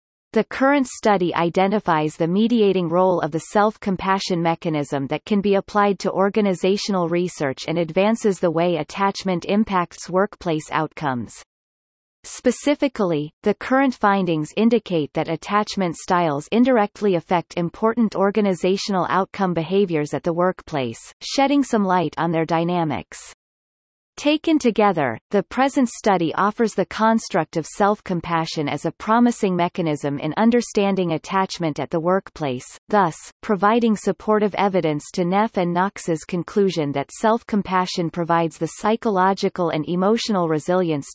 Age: 30-49